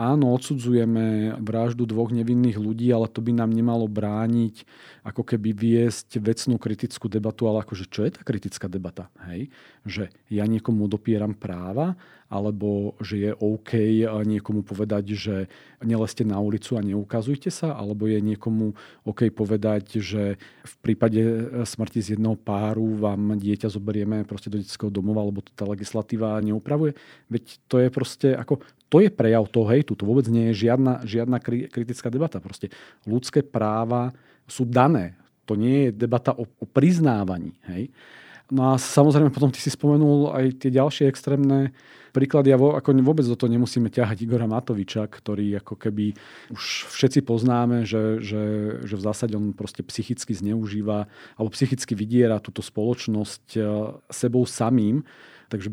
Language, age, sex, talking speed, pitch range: Slovak, 40-59, male, 155 wpm, 105-125 Hz